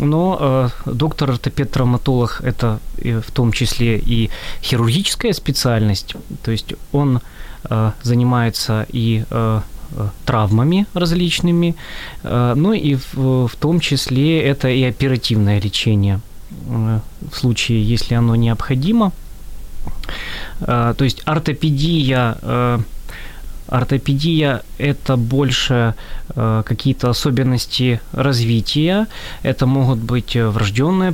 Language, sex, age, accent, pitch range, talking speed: Ukrainian, male, 20-39, native, 115-145 Hz, 100 wpm